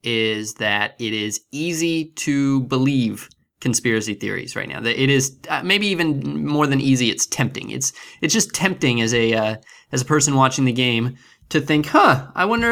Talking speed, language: 190 wpm, English